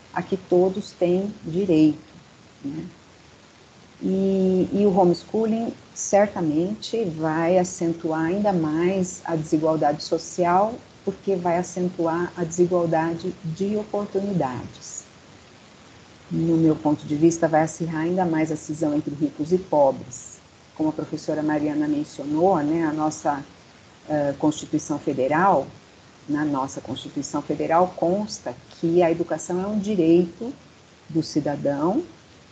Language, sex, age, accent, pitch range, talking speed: Portuguese, female, 50-69, Brazilian, 155-190 Hz, 120 wpm